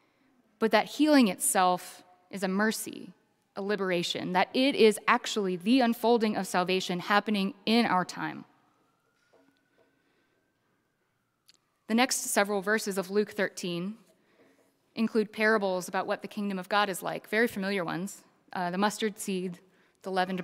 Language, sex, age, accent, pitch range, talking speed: English, female, 20-39, American, 185-220 Hz, 140 wpm